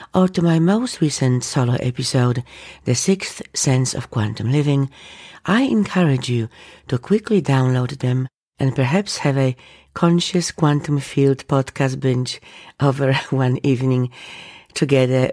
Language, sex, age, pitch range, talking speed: English, female, 50-69, 125-165 Hz, 130 wpm